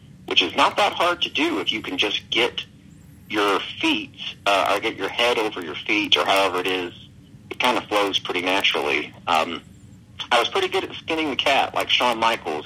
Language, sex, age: English, male, 40-59